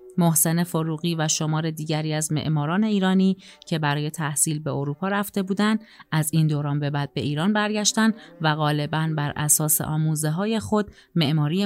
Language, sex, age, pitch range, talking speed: Persian, female, 30-49, 150-180 Hz, 155 wpm